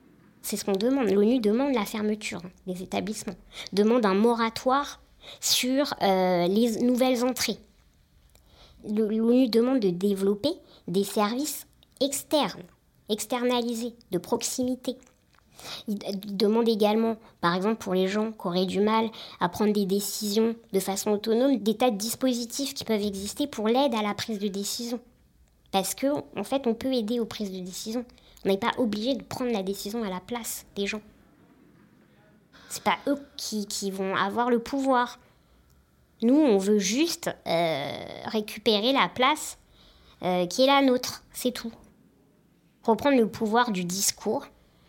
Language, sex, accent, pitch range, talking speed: French, male, French, 200-250 Hz, 155 wpm